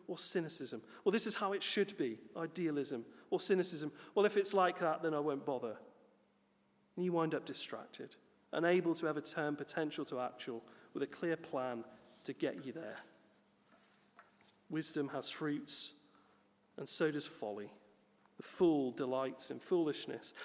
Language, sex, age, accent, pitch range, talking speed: English, male, 40-59, British, 145-205 Hz, 155 wpm